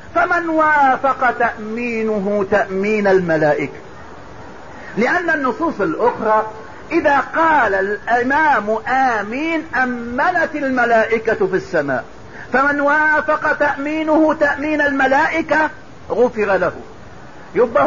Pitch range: 250-310 Hz